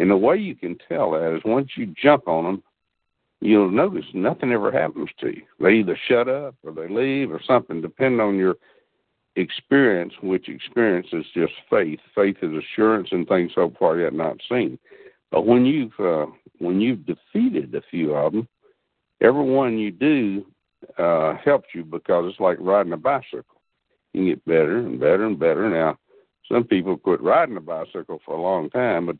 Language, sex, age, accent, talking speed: English, male, 60-79, American, 190 wpm